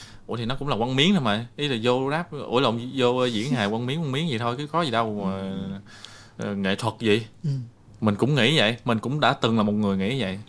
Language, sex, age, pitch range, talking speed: Vietnamese, male, 20-39, 100-130 Hz, 250 wpm